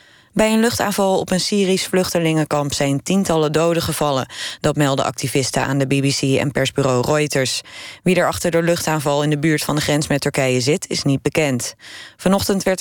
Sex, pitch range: female, 140-175 Hz